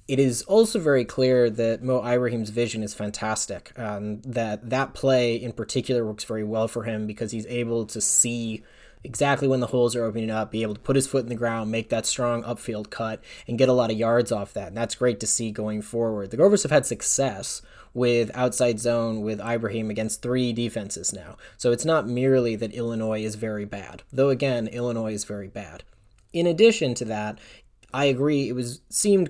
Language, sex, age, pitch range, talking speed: English, male, 20-39, 110-130 Hz, 205 wpm